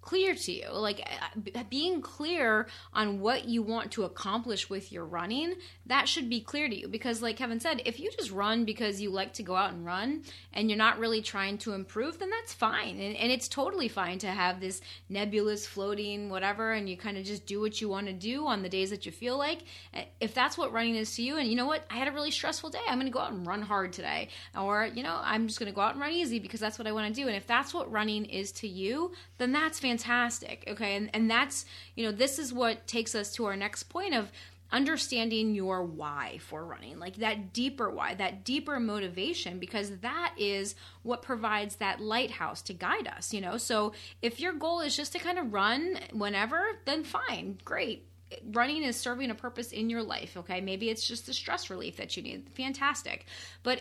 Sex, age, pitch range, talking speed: female, 20-39, 205-255 Hz, 230 wpm